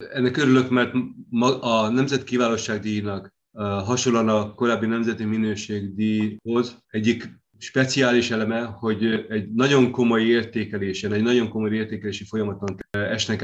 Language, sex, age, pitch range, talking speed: Hungarian, male, 30-49, 105-120 Hz, 115 wpm